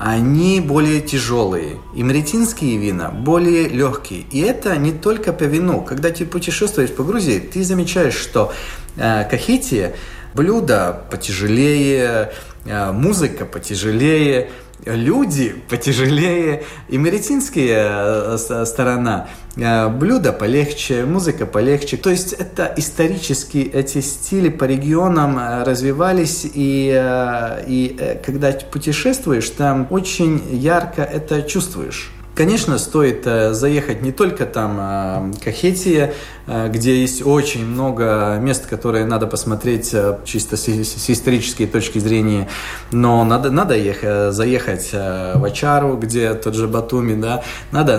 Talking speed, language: 115 wpm, Russian